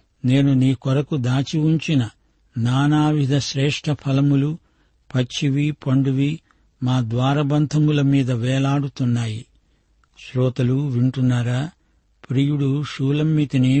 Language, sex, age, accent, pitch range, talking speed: Telugu, male, 50-69, native, 130-145 Hz, 75 wpm